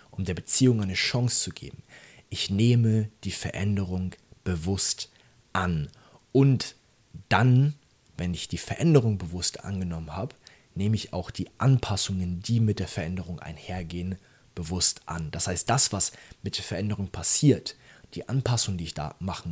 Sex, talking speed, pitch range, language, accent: male, 150 wpm, 90-115 Hz, German, German